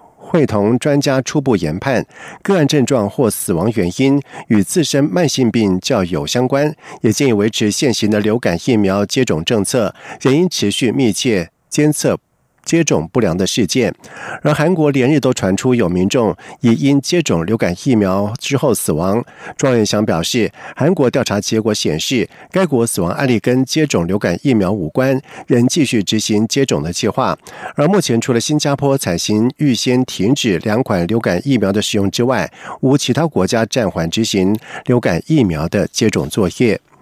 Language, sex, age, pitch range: German, male, 50-69, 105-145 Hz